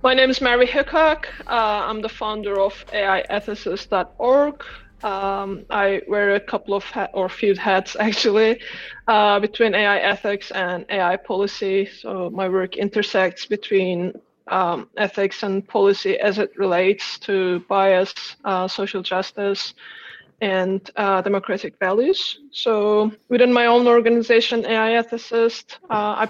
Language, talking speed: English, 130 wpm